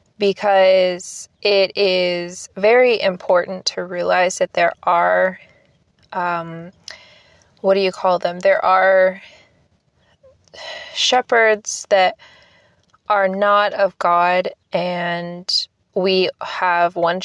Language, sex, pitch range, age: English, female, 165-195 Hz, 20-39